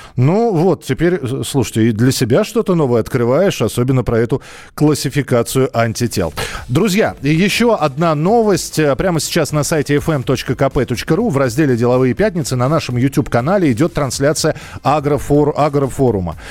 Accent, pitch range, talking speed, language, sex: native, 125-160 Hz, 125 wpm, Russian, male